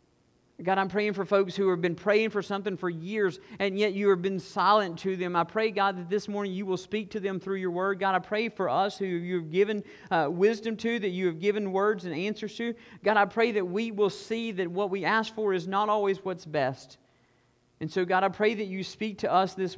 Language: English